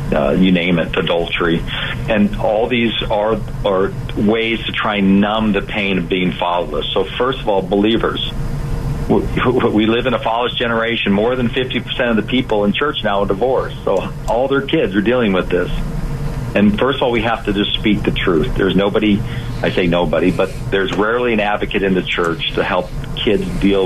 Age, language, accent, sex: 40-59, English, American, male